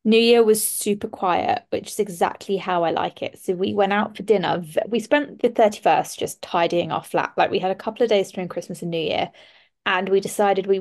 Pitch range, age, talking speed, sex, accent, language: 195-235 Hz, 20-39, 235 wpm, female, British, English